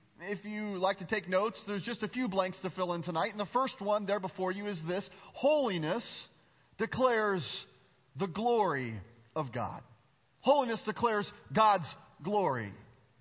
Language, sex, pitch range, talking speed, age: English, male, 160-235 Hz, 155 wpm, 40-59